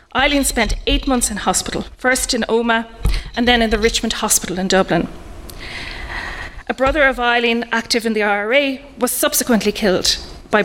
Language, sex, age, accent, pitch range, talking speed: English, female, 30-49, Irish, 195-245 Hz, 165 wpm